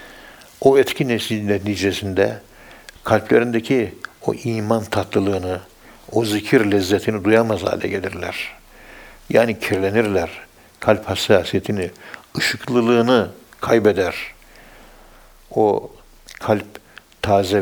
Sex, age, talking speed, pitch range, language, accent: male, 60-79, 75 wpm, 100-110 Hz, Turkish, native